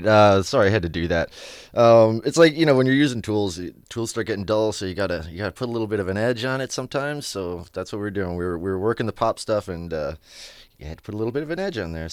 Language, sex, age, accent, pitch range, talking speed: English, male, 30-49, American, 90-115 Hz, 310 wpm